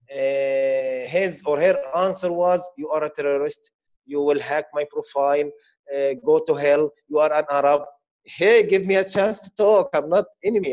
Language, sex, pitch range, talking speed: English, male, 140-190 Hz, 185 wpm